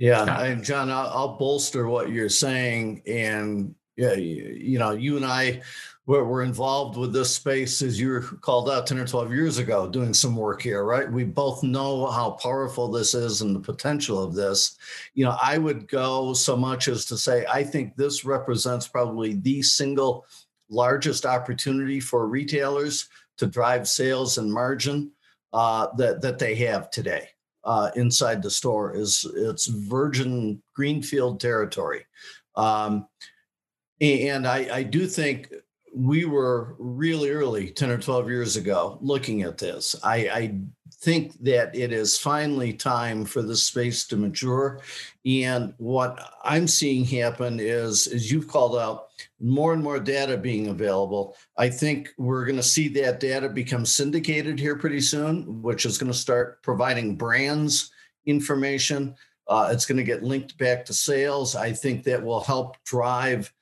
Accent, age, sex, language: American, 50-69, male, English